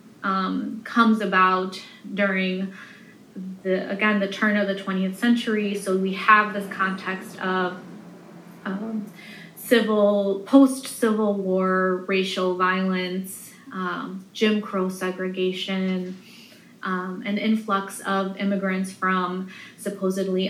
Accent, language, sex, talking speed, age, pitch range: American, English, female, 105 wpm, 20-39, 185-215 Hz